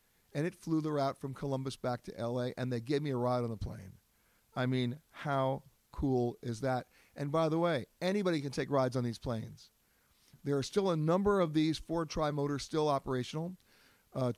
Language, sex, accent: English, male, American